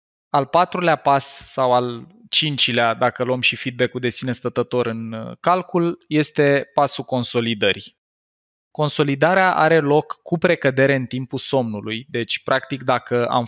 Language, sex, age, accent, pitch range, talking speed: Romanian, male, 20-39, native, 120-145 Hz, 135 wpm